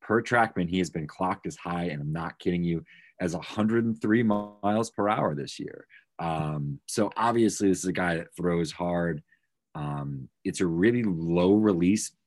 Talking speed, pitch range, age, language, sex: 175 wpm, 75-95 Hz, 30-49, English, male